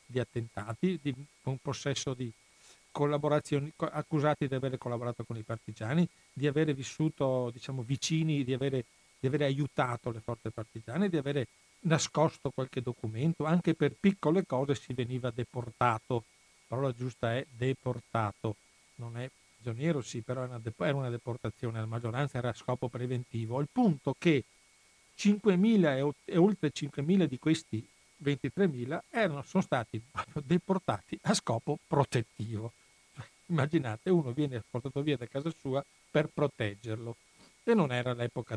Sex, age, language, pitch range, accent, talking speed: male, 50-69, Italian, 120-155 Hz, native, 135 wpm